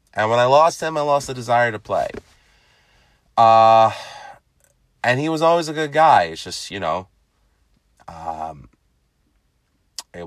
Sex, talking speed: male, 145 wpm